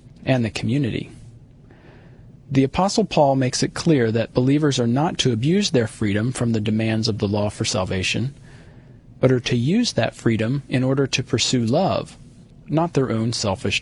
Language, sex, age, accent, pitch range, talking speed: English, male, 40-59, American, 120-140 Hz, 175 wpm